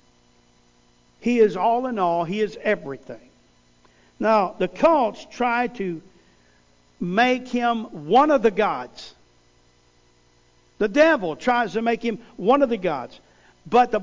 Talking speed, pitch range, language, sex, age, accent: 135 wpm, 170-260 Hz, English, male, 50-69, American